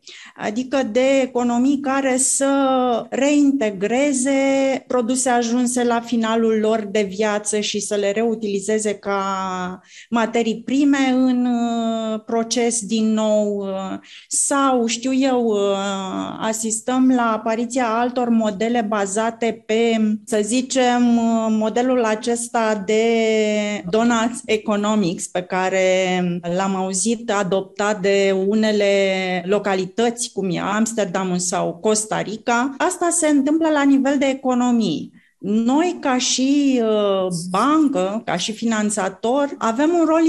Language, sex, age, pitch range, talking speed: Romanian, female, 30-49, 205-250 Hz, 110 wpm